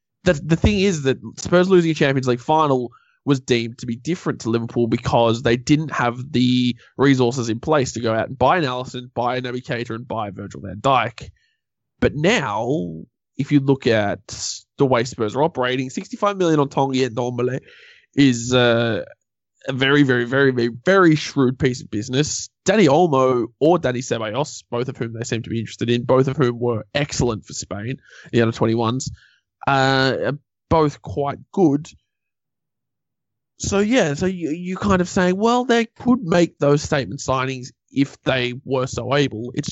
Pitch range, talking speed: 115-140 Hz, 180 wpm